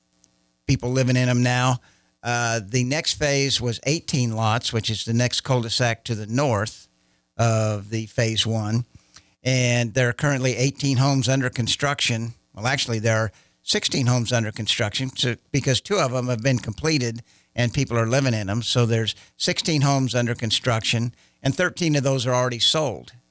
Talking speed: 170 wpm